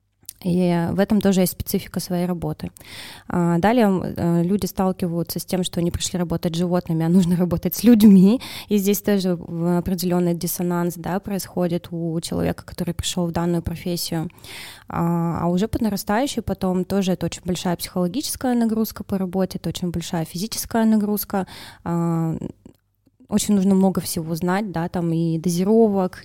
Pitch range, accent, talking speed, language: 170-200 Hz, native, 145 wpm, Russian